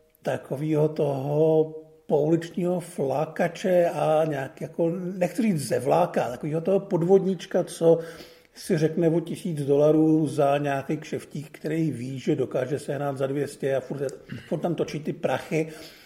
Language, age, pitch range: Czech, 50-69, 145-175 Hz